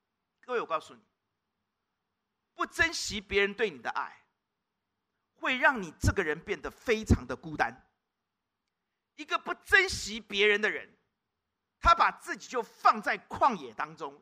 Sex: male